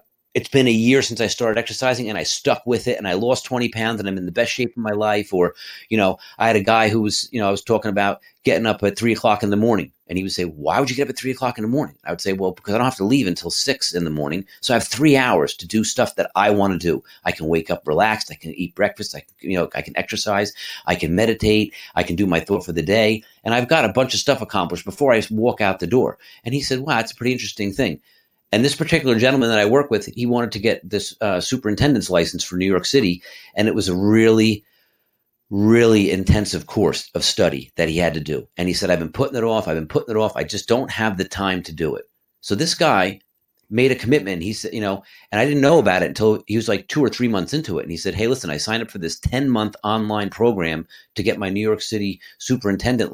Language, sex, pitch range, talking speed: English, male, 95-120 Hz, 280 wpm